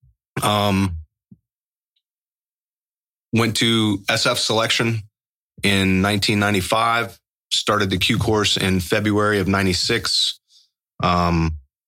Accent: American